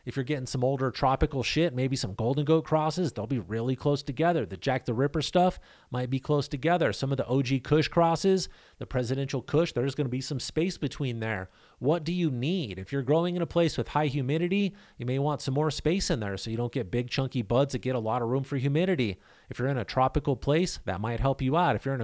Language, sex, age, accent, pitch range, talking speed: English, male, 30-49, American, 120-150 Hz, 255 wpm